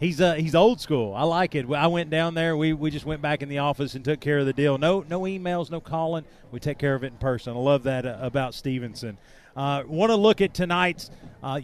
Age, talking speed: 40-59, 265 wpm